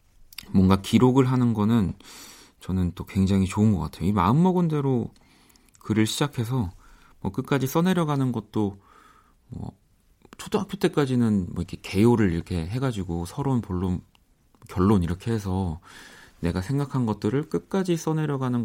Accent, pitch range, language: native, 95-125 Hz, Korean